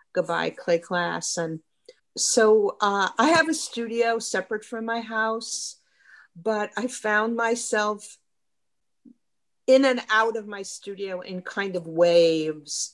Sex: female